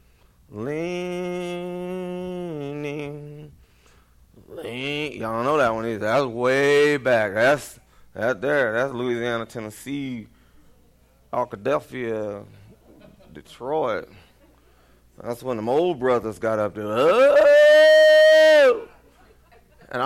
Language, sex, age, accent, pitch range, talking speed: English, male, 30-49, American, 95-145 Hz, 95 wpm